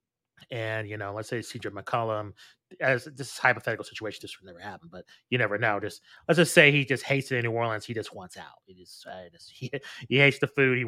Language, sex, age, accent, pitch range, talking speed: English, male, 30-49, American, 110-135 Hz, 245 wpm